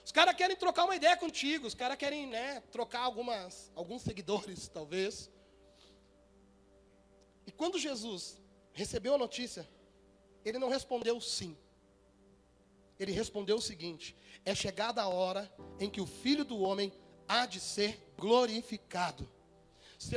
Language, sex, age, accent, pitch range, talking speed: Portuguese, male, 30-49, Brazilian, 175-240 Hz, 135 wpm